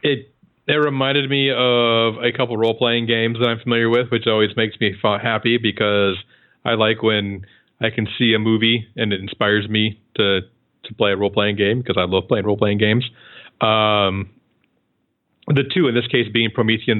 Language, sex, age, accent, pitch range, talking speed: English, male, 40-59, American, 105-130 Hz, 185 wpm